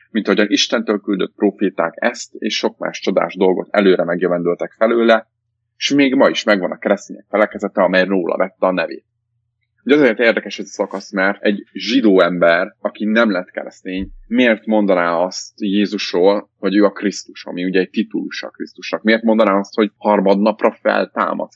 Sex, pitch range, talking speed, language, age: male, 95-110 Hz, 165 wpm, Hungarian, 30-49